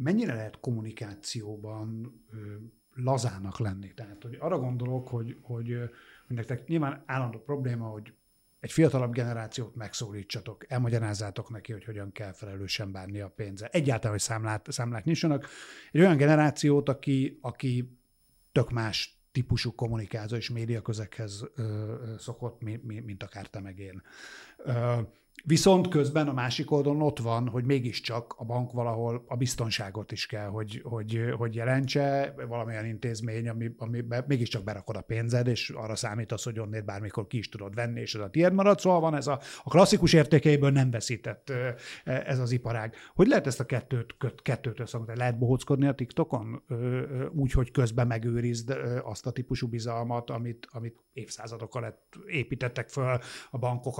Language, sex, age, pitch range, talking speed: Hungarian, male, 50-69, 115-130 Hz, 155 wpm